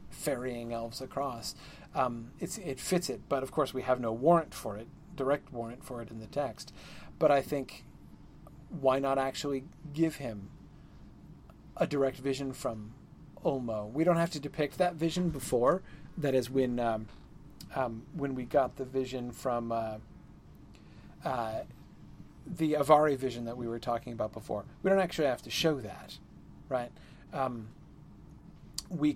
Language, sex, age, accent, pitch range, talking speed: English, male, 40-59, American, 120-150 Hz, 155 wpm